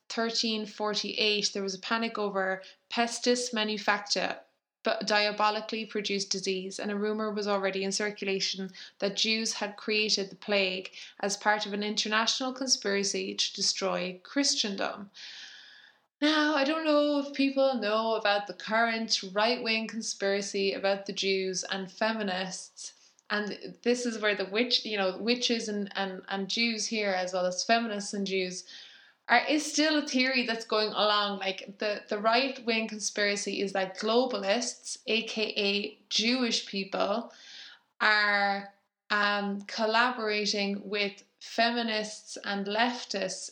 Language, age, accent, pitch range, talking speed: English, 20-39, Irish, 200-225 Hz, 135 wpm